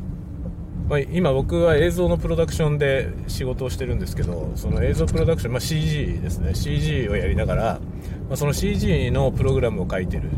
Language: Japanese